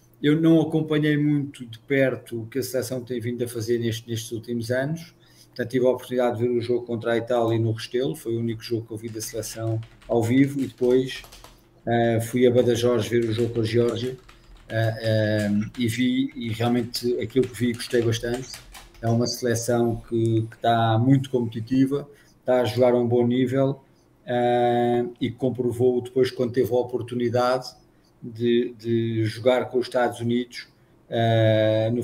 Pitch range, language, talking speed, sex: 115-125 Hz, Portuguese, 180 wpm, male